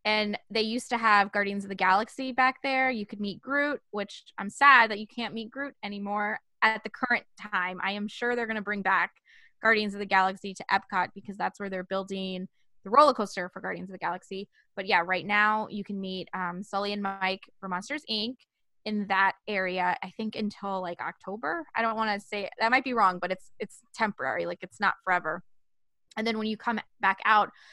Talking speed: 220 wpm